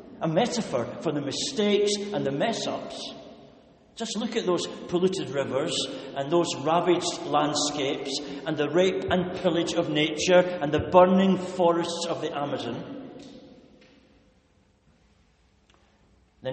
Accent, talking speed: British, 120 wpm